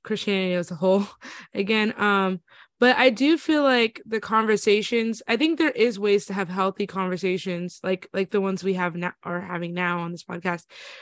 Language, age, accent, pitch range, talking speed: English, 20-39, American, 185-225 Hz, 190 wpm